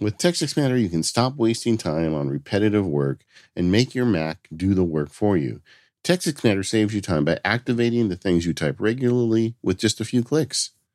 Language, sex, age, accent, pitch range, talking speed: English, male, 50-69, American, 90-120 Hz, 205 wpm